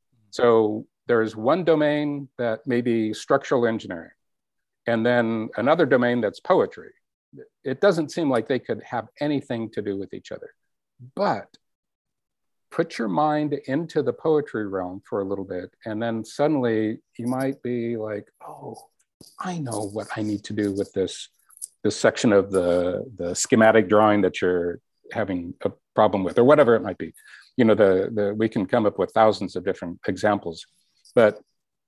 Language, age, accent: English, 50-69, American